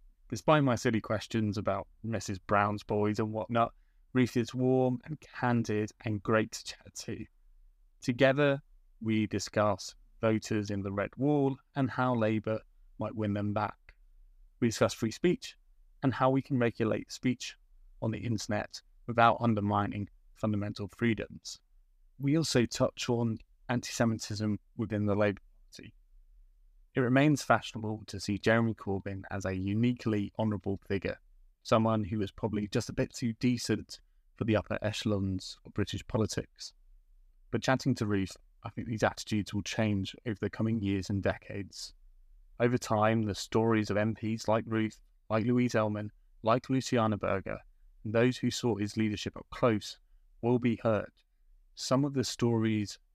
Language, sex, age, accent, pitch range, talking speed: English, male, 20-39, British, 100-120 Hz, 150 wpm